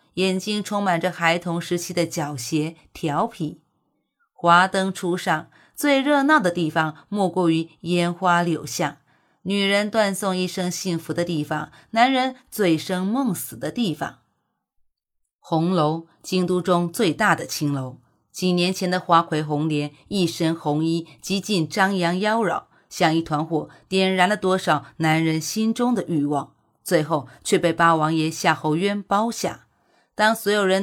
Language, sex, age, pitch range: Chinese, female, 30-49, 155-190 Hz